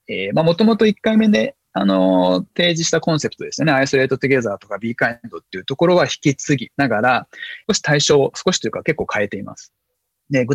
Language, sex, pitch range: Japanese, male, 115-175 Hz